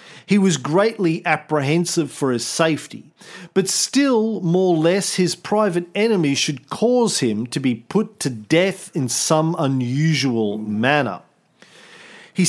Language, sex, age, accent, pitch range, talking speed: English, male, 40-59, Australian, 150-205 Hz, 135 wpm